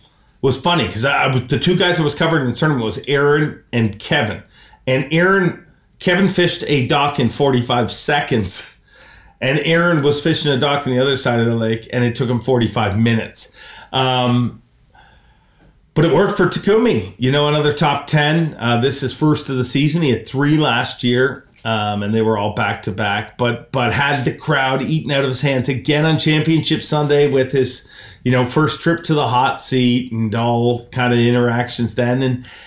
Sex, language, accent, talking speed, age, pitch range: male, English, American, 200 wpm, 30-49, 125-175 Hz